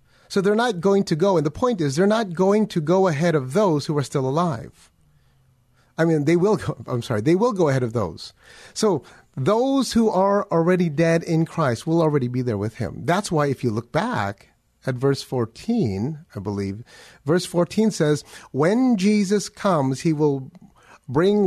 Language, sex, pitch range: English, male, 110-165 Hz